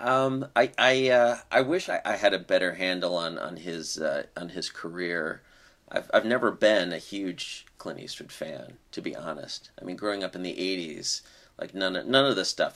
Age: 30-49